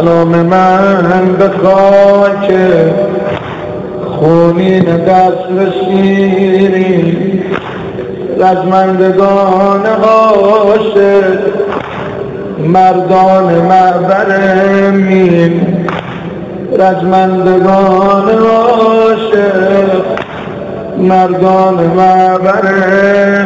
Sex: male